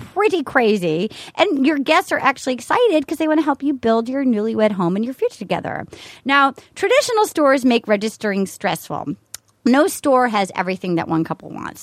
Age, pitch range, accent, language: 30-49, 205-300 Hz, American, English